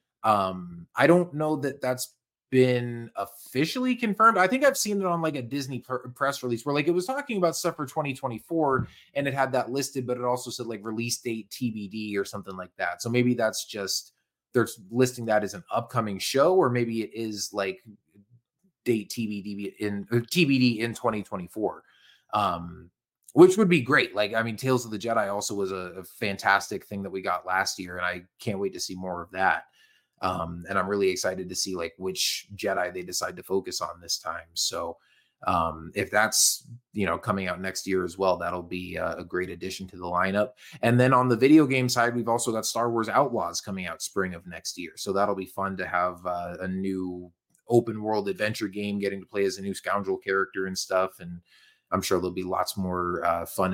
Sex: male